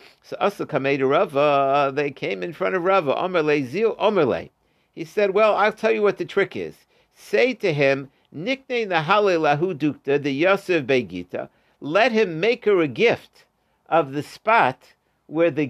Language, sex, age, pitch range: English, male, 50-69, 145-195 Hz